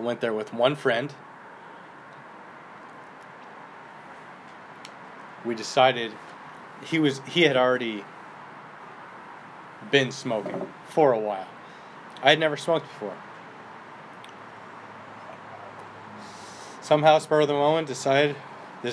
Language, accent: English, American